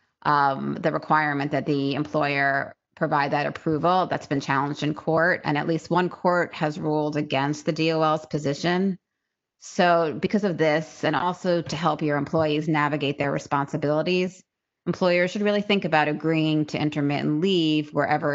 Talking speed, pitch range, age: 155 wpm, 145-170 Hz, 30-49